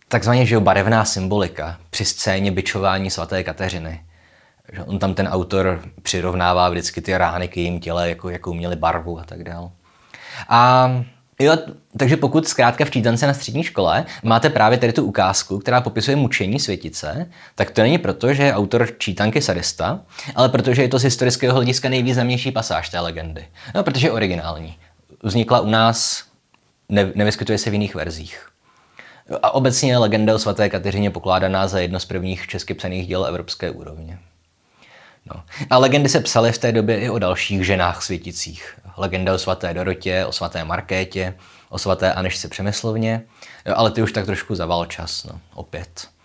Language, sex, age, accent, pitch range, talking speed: Czech, male, 20-39, native, 90-115 Hz, 165 wpm